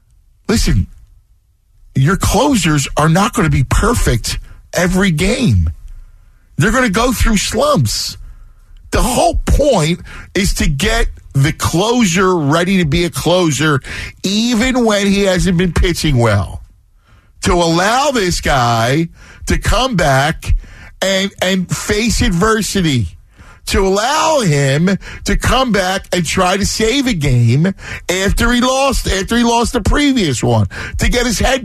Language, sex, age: English, male, 50-69